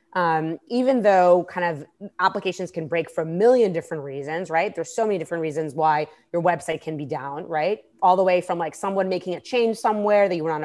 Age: 20-39